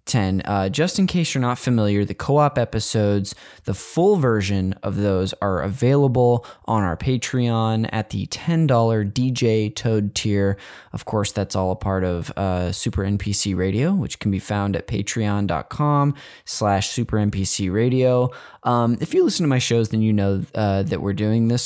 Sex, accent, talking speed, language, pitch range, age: male, American, 165 wpm, English, 100-130 Hz, 20-39